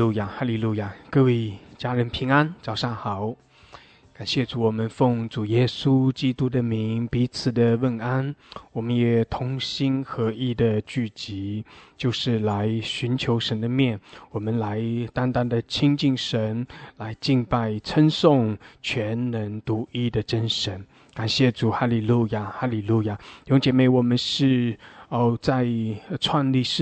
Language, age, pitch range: English, 20-39, 110-130 Hz